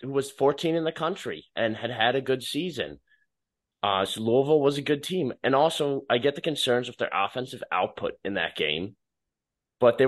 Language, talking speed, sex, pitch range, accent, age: English, 200 wpm, male, 105-135 Hz, American, 20-39